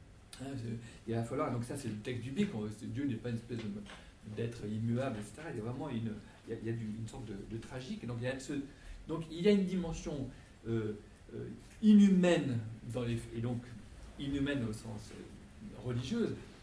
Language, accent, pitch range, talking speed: French, French, 115-150 Hz, 200 wpm